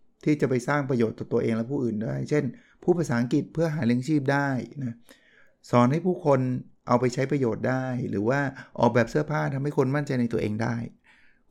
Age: 20-39